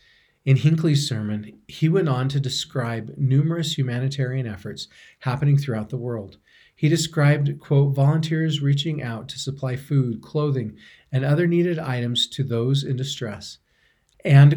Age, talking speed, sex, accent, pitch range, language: 40-59, 140 wpm, male, American, 115-140 Hz, English